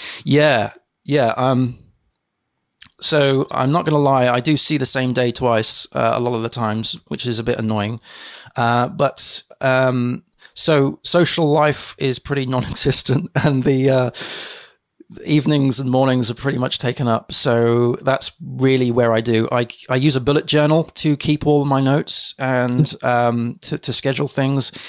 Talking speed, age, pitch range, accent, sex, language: 170 wpm, 20-39, 120-135 Hz, British, male, English